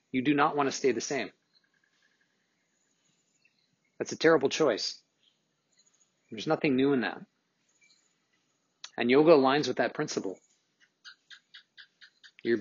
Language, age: English, 40-59